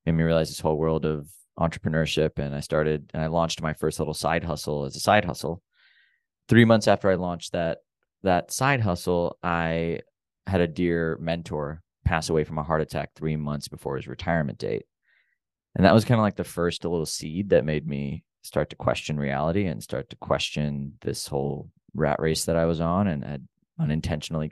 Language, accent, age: English, American, 20-39